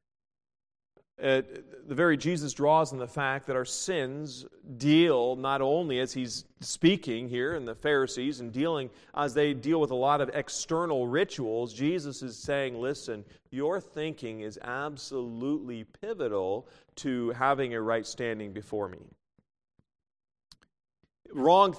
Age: 40-59